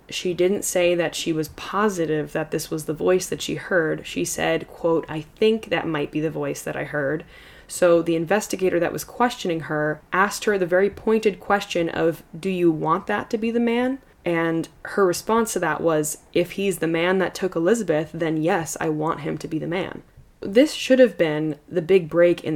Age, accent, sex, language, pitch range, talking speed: 10-29, American, female, English, 160-195 Hz, 215 wpm